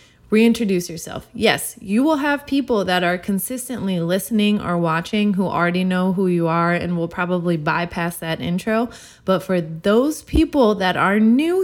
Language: English